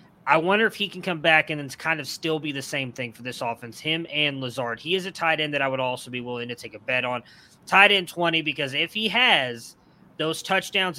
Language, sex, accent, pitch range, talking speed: English, male, American, 135-170 Hz, 255 wpm